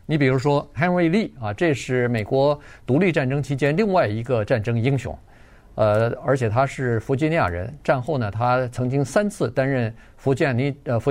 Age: 50-69